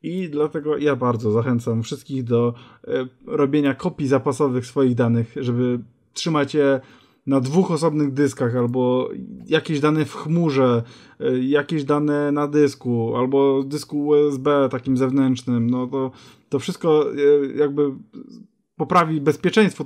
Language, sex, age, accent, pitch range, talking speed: Polish, male, 20-39, native, 135-165 Hz, 120 wpm